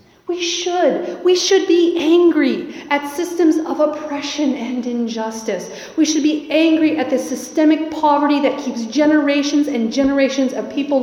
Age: 30-49